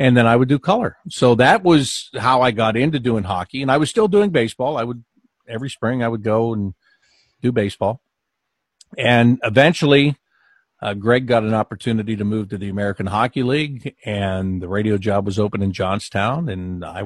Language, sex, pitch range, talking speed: English, male, 105-130 Hz, 195 wpm